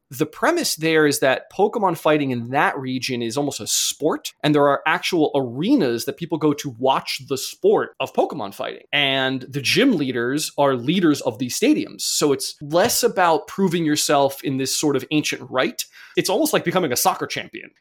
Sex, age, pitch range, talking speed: male, 20-39, 135-185 Hz, 190 wpm